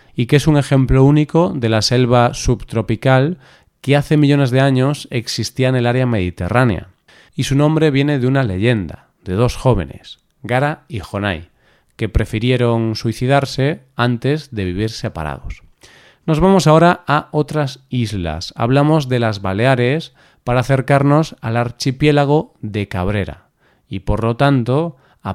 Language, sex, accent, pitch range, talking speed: Spanish, male, Spanish, 115-145 Hz, 145 wpm